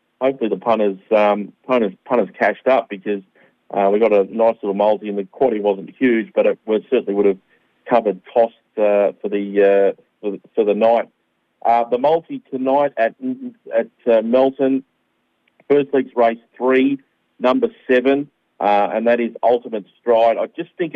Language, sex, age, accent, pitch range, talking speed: English, male, 40-59, Australian, 100-120 Hz, 185 wpm